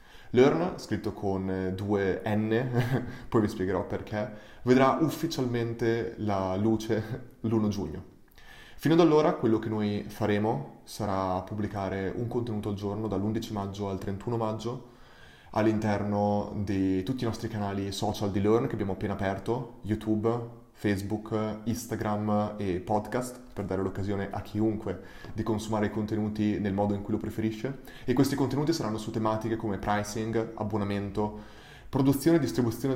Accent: native